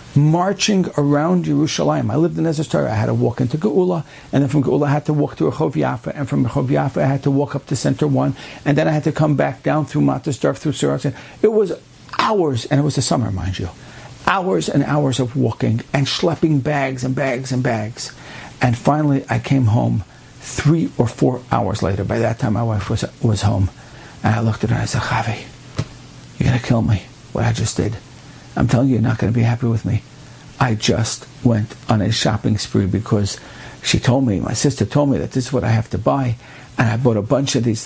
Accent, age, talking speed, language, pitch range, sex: American, 60-79, 235 wpm, English, 115-145 Hz, male